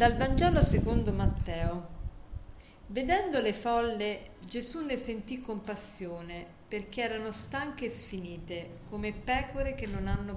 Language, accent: Italian, native